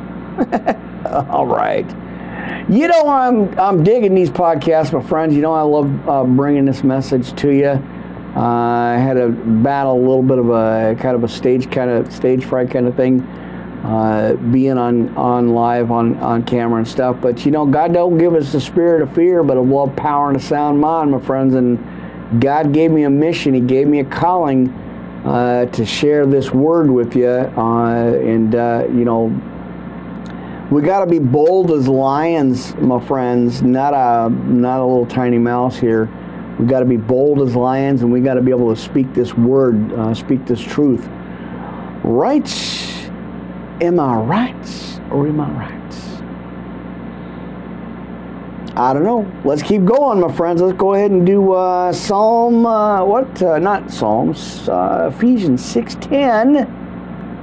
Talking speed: 170 wpm